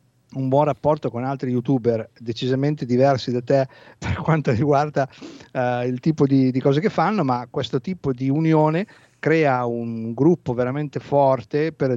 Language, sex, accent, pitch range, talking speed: Italian, male, native, 120-140 Hz, 155 wpm